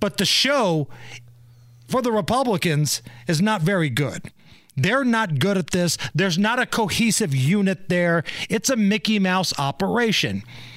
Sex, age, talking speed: male, 40-59, 145 wpm